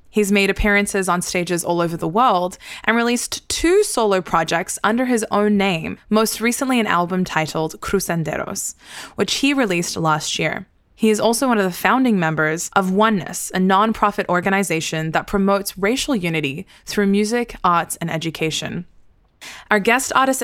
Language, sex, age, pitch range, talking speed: English, female, 20-39, 175-225 Hz, 160 wpm